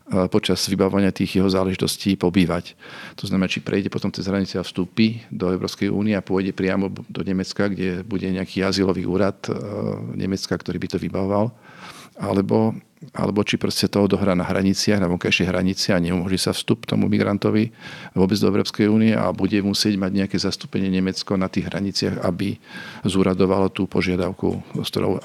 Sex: male